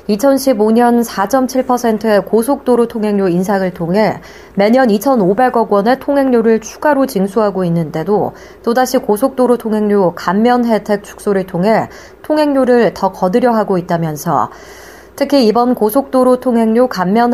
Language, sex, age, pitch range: Korean, female, 30-49, 195-255 Hz